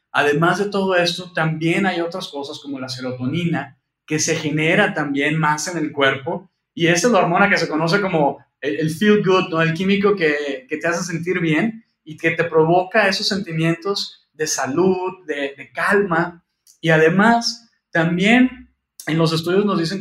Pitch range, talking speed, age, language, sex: 150-190 Hz, 175 wpm, 30-49, Spanish, male